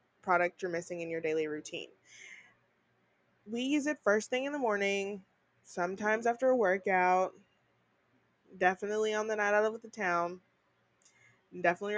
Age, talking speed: 20-39, 140 wpm